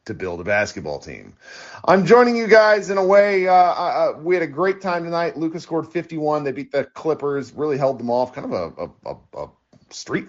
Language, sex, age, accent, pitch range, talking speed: English, male, 30-49, American, 120-180 Hz, 210 wpm